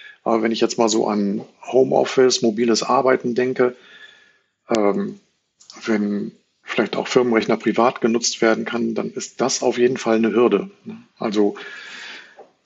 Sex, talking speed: male, 140 wpm